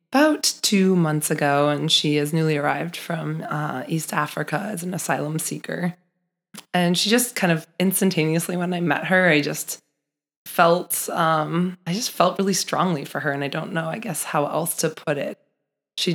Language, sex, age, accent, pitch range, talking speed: English, female, 20-39, American, 150-170 Hz, 185 wpm